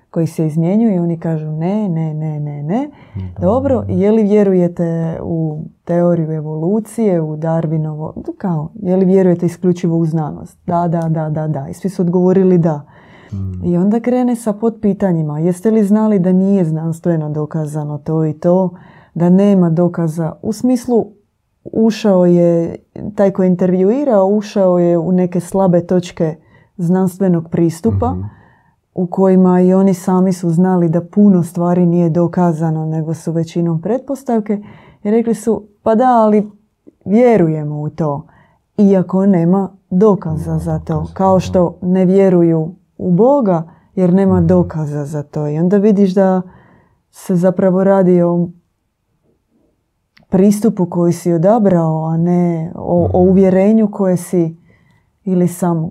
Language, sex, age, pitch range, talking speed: Croatian, female, 20-39, 165-195 Hz, 145 wpm